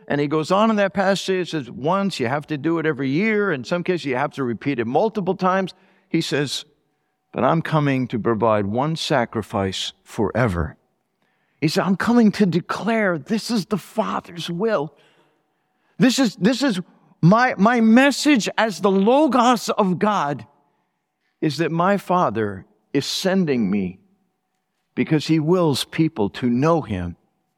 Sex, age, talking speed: male, 50-69, 160 wpm